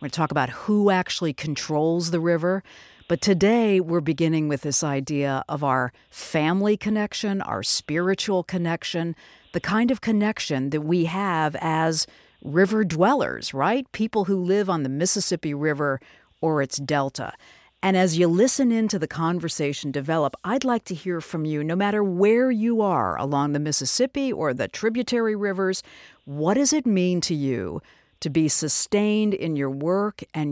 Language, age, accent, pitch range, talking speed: English, 50-69, American, 155-205 Hz, 165 wpm